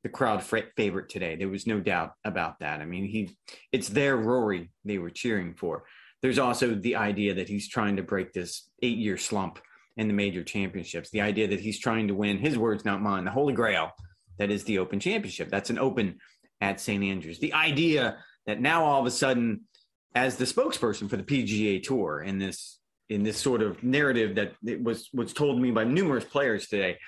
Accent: American